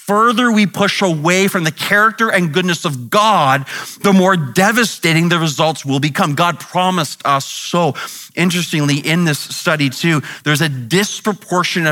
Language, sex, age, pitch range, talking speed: English, male, 30-49, 140-175 Hz, 150 wpm